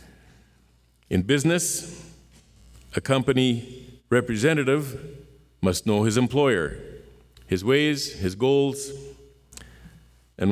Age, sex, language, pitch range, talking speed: 50-69, male, English, 80-130 Hz, 80 wpm